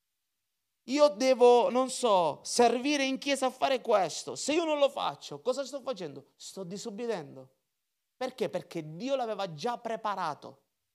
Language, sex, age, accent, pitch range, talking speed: Italian, male, 30-49, native, 180-255 Hz, 145 wpm